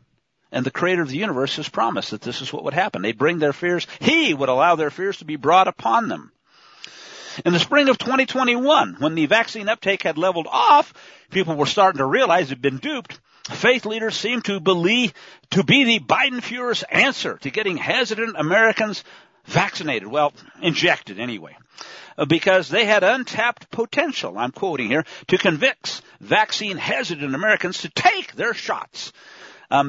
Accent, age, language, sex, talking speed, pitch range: American, 50-69, English, male, 170 wpm, 160-235 Hz